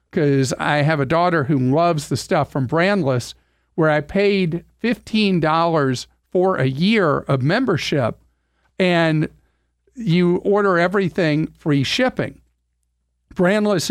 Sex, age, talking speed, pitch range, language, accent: male, 50-69, 115 wpm, 140-180 Hz, English, American